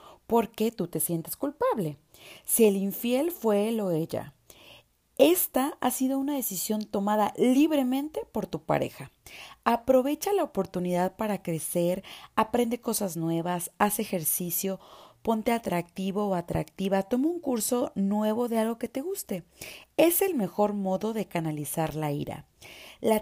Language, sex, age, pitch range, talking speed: Spanish, female, 40-59, 180-260 Hz, 140 wpm